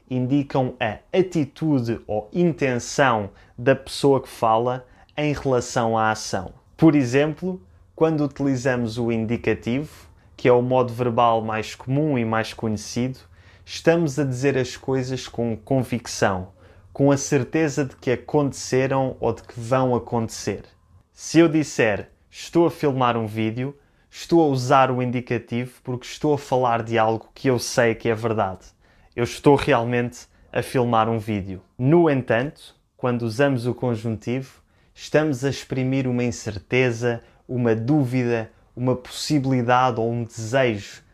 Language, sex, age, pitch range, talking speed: Portuguese, male, 20-39, 115-135 Hz, 140 wpm